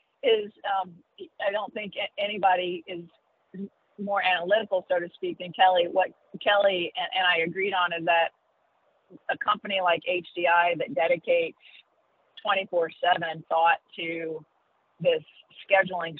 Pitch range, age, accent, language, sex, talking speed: 170-205 Hz, 40-59, American, English, female, 120 wpm